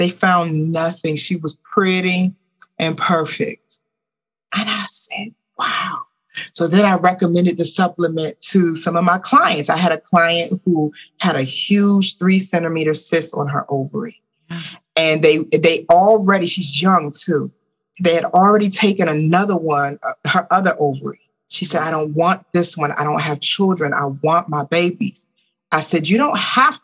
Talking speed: 165 wpm